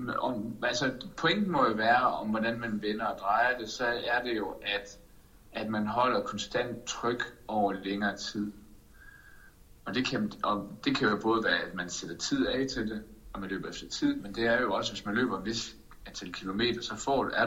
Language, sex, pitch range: Danish, male, 105-125 Hz